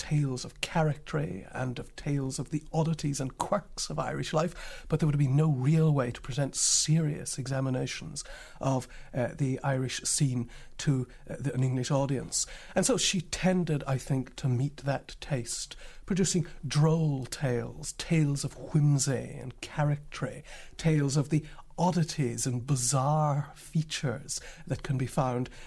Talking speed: 150 wpm